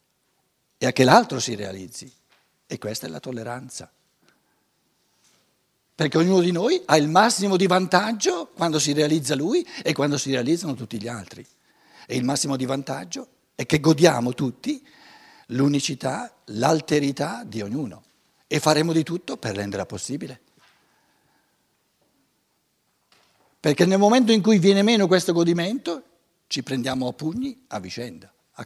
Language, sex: Italian, male